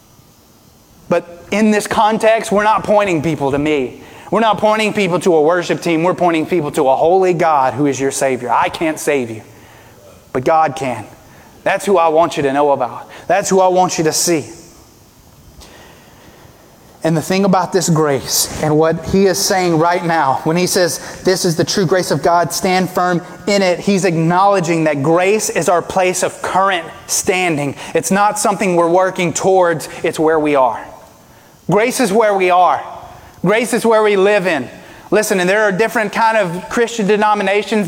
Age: 30-49